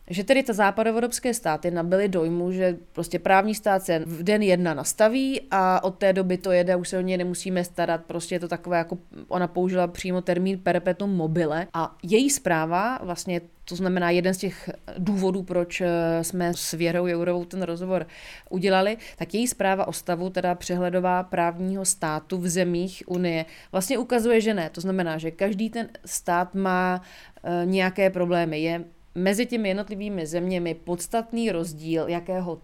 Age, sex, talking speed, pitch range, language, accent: 30-49, female, 165 wpm, 175-195 Hz, Czech, native